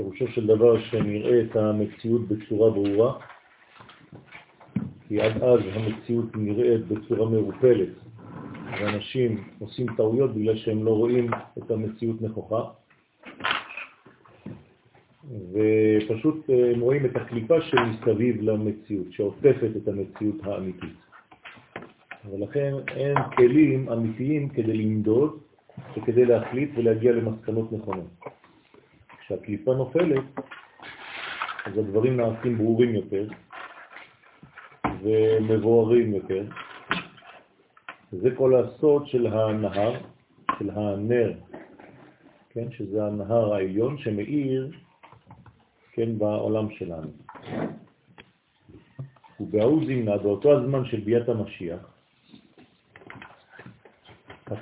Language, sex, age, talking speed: French, male, 40-59, 85 wpm